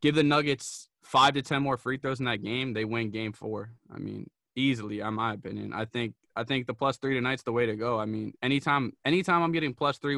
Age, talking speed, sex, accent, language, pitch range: 20-39, 250 wpm, male, American, English, 115-130 Hz